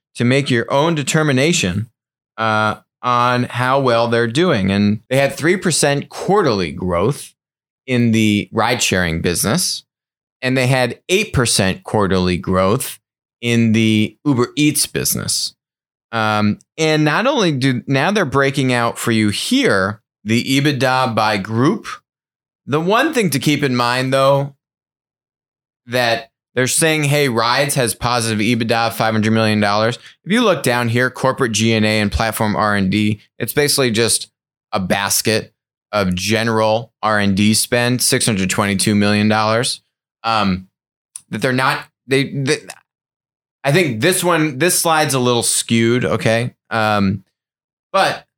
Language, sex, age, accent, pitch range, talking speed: English, male, 30-49, American, 110-140 Hz, 135 wpm